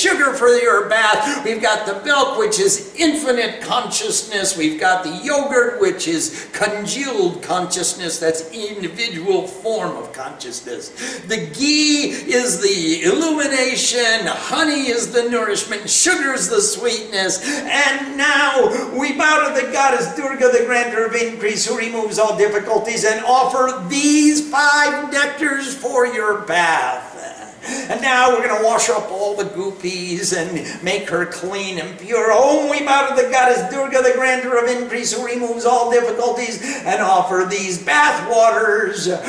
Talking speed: 150 wpm